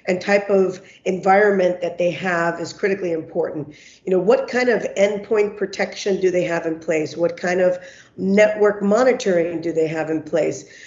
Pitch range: 175-205 Hz